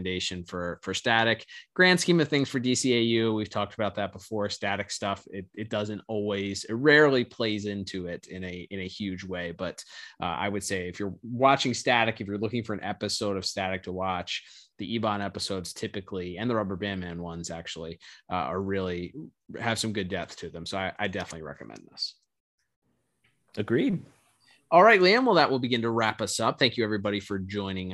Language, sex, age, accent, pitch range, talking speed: English, male, 20-39, American, 95-115 Hz, 200 wpm